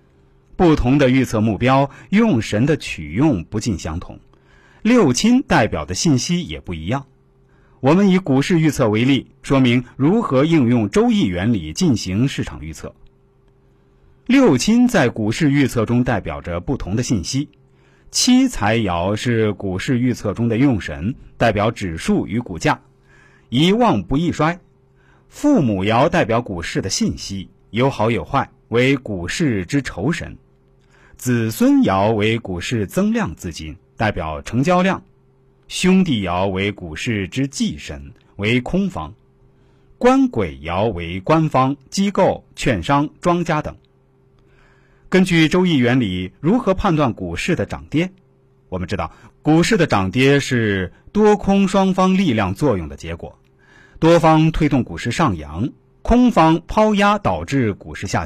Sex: male